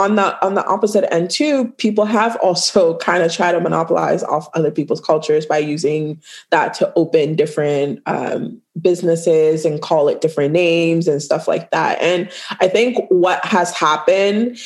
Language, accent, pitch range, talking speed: English, American, 165-205 Hz, 170 wpm